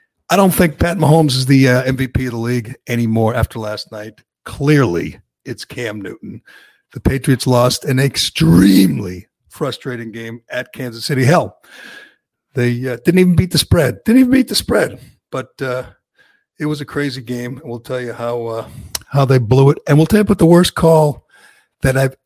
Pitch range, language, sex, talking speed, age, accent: 120-160 Hz, English, male, 190 wpm, 50-69, American